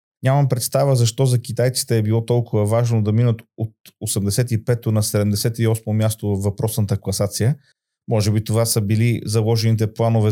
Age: 30-49